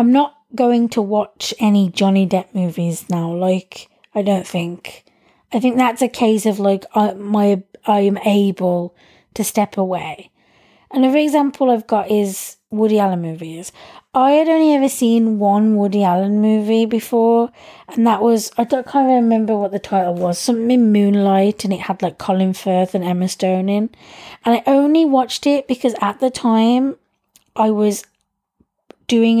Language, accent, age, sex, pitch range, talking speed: English, British, 20-39, female, 195-235 Hz, 170 wpm